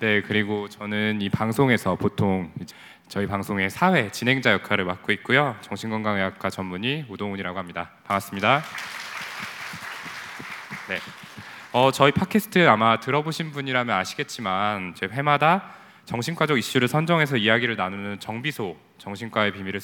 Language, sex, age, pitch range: Korean, male, 20-39, 95-130 Hz